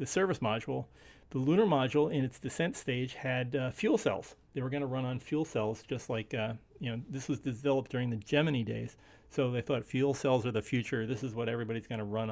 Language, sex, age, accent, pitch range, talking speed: English, male, 40-59, American, 110-135 Hz, 235 wpm